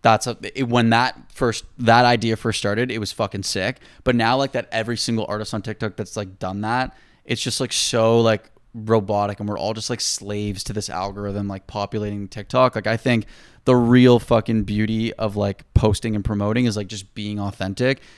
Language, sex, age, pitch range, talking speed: English, male, 20-39, 105-120 Hz, 200 wpm